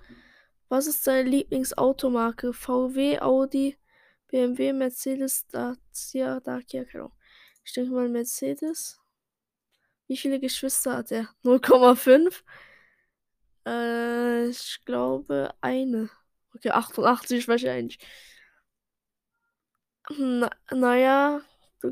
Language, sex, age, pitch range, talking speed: Dutch, female, 10-29, 245-275 Hz, 95 wpm